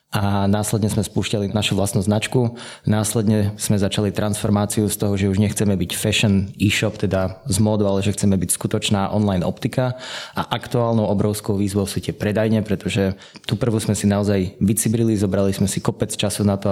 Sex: male